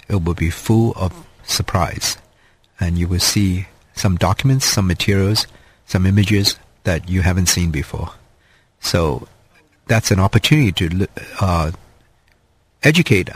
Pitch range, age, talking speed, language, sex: 90-115 Hz, 50-69, 125 wpm, English, male